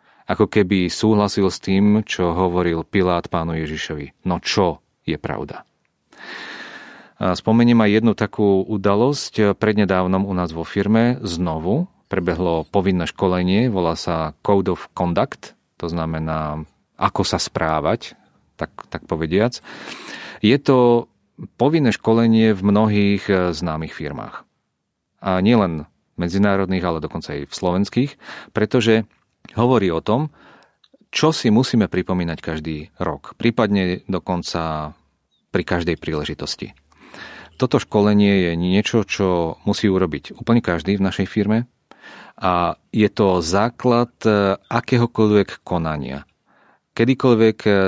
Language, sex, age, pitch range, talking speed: Czech, male, 40-59, 85-110 Hz, 115 wpm